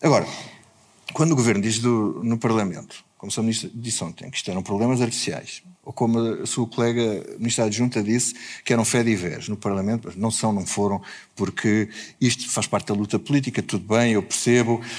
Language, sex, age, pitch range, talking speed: Portuguese, male, 50-69, 115-170 Hz, 190 wpm